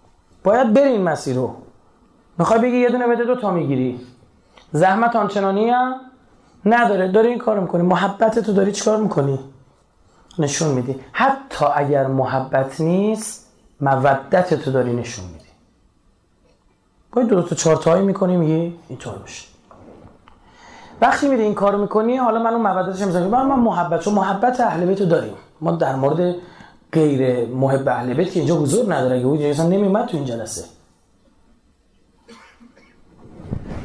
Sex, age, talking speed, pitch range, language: male, 30-49, 145 wpm, 135-220 Hz, Persian